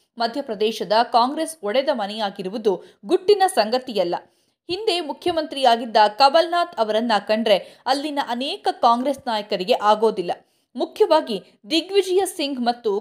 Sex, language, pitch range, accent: female, Kannada, 215-295 Hz, native